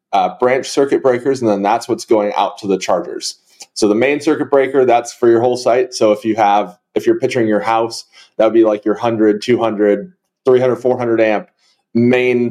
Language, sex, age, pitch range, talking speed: English, male, 30-49, 120-155 Hz, 205 wpm